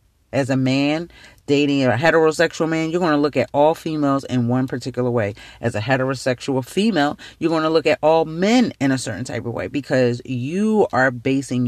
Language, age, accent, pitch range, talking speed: English, 40-59, American, 125-185 Hz, 200 wpm